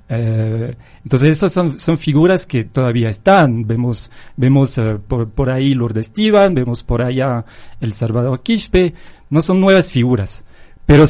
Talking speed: 150 wpm